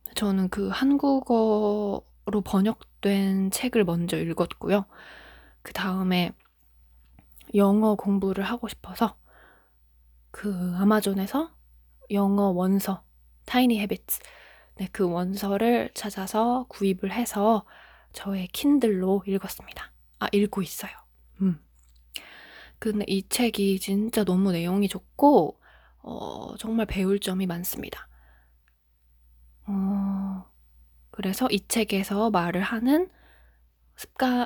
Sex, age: female, 20-39